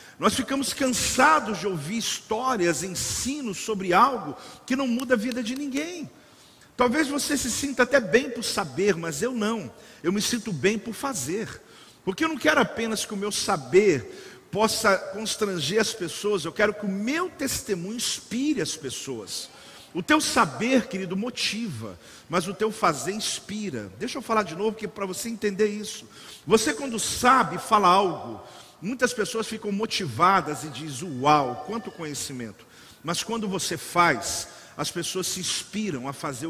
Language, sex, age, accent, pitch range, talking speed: Portuguese, male, 50-69, Brazilian, 165-225 Hz, 160 wpm